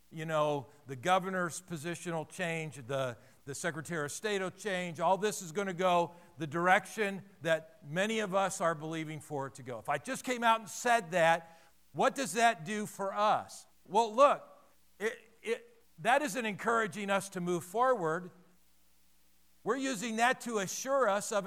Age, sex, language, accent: 50-69, male, English, American